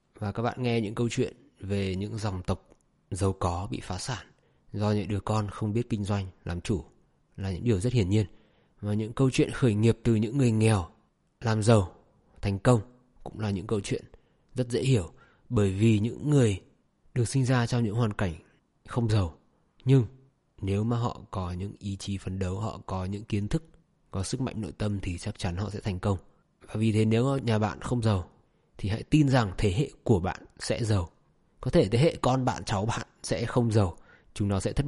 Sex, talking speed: male, 220 wpm